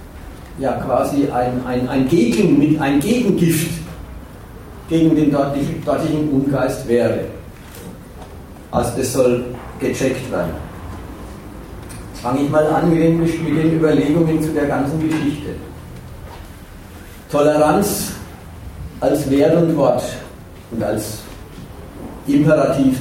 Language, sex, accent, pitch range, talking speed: German, male, German, 95-155 Hz, 110 wpm